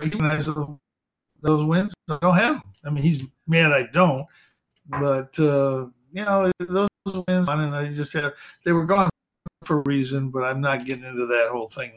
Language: English